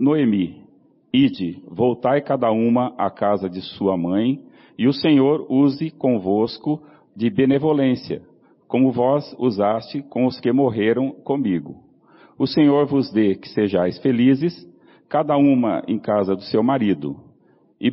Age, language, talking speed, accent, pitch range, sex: 40-59, Portuguese, 135 wpm, Brazilian, 110-140 Hz, male